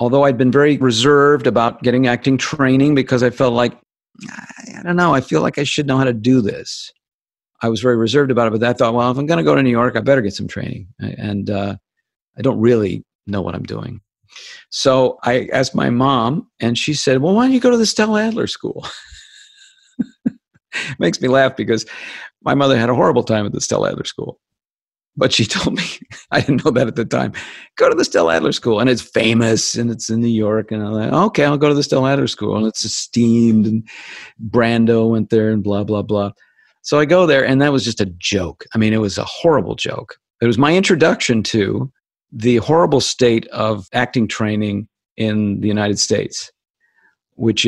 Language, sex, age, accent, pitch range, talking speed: English, male, 50-69, American, 110-140 Hz, 215 wpm